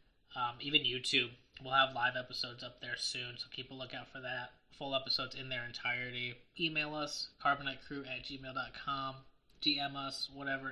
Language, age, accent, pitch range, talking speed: English, 20-39, American, 130-160 Hz, 160 wpm